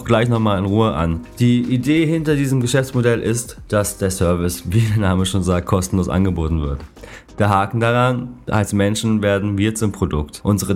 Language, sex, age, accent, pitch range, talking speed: German, male, 30-49, German, 95-125 Hz, 180 wpm